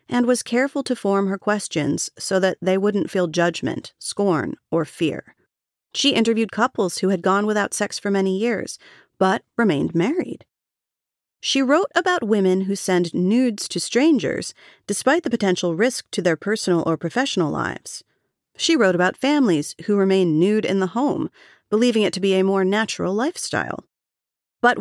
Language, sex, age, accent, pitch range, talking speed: English, female, 40-59, American, 175-245 Hz, 165 wpm